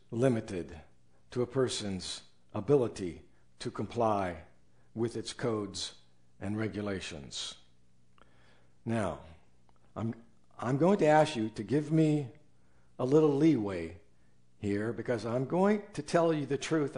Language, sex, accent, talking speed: English, male, American, 120 wpm